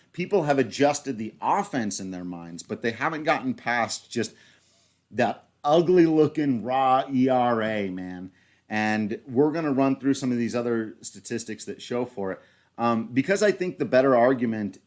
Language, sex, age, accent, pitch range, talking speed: English, male, 30-49, American, 100-130 Hz, 170 wpm